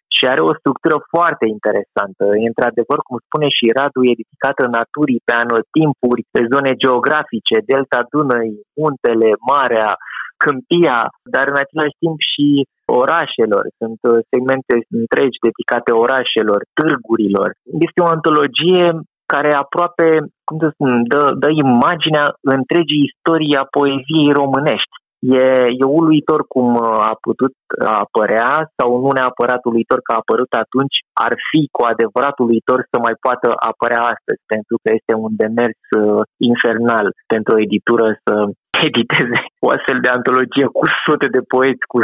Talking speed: 140 wpm